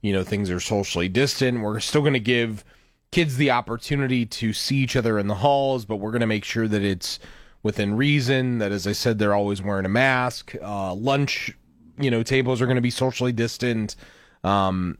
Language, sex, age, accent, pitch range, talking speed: English, male, 30-49, American, 100-125 Hz, 210 wpm